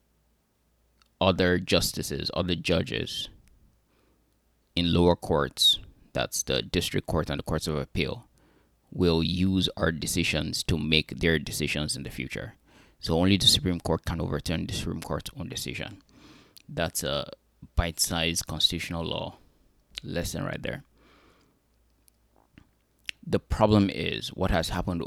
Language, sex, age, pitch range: English, male, 20-39, 80-95 Hz